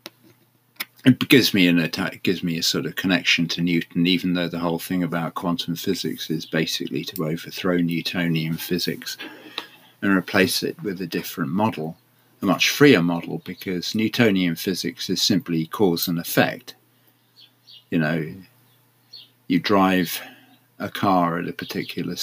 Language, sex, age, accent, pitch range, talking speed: English, male, 50-69, British, 85-125 Hz, 150 wpm